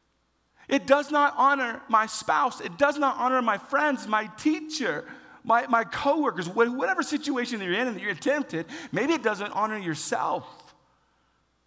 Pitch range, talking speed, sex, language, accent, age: 220-290 Hz, 160 wpm, male, English, American, 40-59